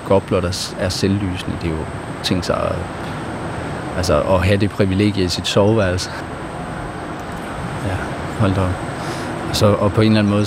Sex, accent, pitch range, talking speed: male, native, 95-110 Hz, 170 wpm